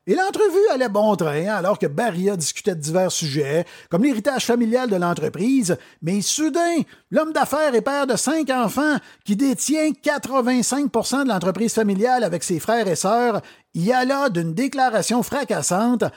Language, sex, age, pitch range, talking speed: French, male, 50-69, 185-265 Hz, 165 wpm